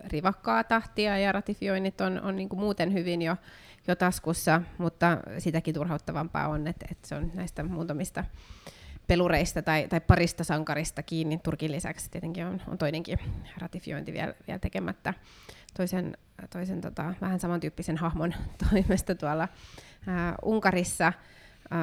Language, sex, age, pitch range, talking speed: Finnish, female, 20-39, 155-180 Hz, 125 wpm